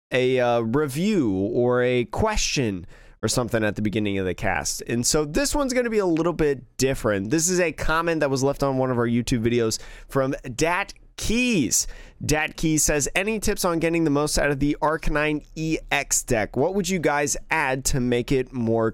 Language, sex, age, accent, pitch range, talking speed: English, male, 20-39, American, 120-160 Hz, 205 wpm